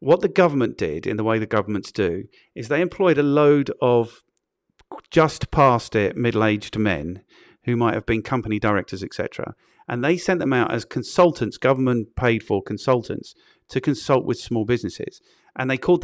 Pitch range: 115-170 Hz